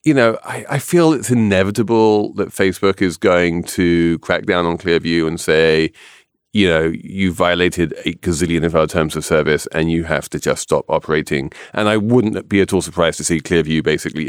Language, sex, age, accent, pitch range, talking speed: English, male, 30-49, British, 90-110 Hz, 195 wpm